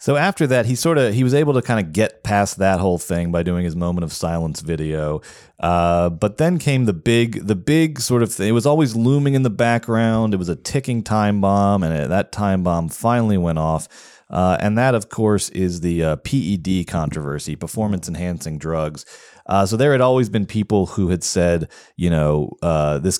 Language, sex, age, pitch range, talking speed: English, male, 30-49, 80-110 Hz, 210 wpm